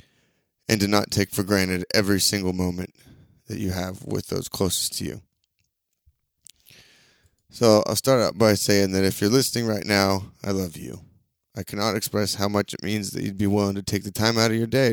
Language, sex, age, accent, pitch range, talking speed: English, male, 20-39, American, 95-110 Hz, 205 wpm